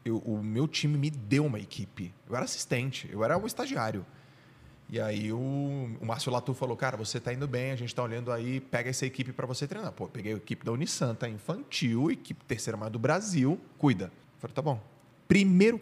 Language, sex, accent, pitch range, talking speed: Portuguese, male, Brazilian, 115-140 Hz, 205 wpm